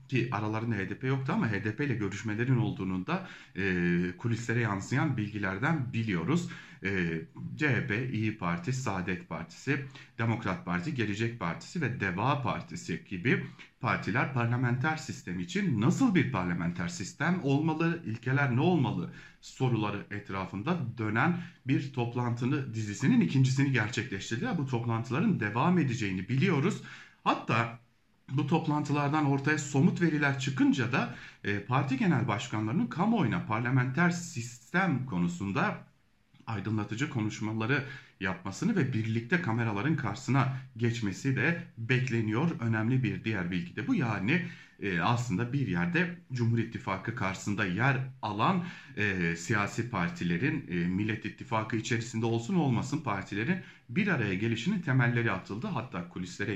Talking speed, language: 120 wpm, German